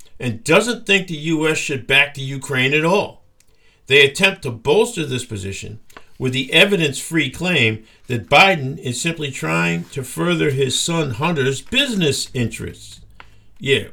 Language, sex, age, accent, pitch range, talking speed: English, male, 50-69, American, 110-165 Hz, 145 wpm